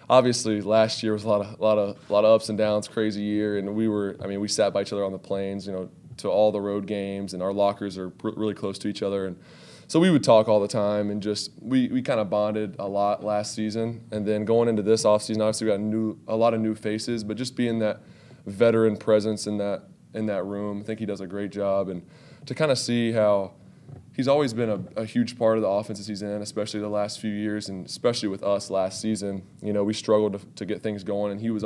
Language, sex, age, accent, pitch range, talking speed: English, male, 20-39, American, 100-110 Hz, 270 wpm